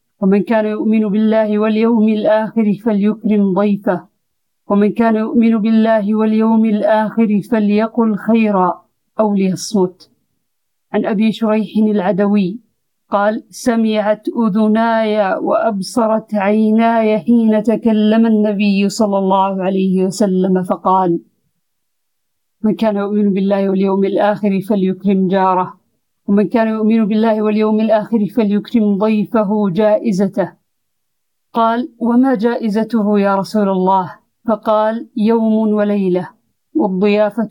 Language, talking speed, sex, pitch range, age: Arabic, 100 wpm, female, 195-220 Hz, 50-69